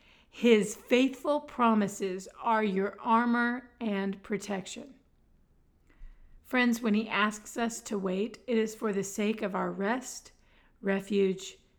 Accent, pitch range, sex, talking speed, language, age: American, 205-245 Hz, female, 120 wpm, English, 40-59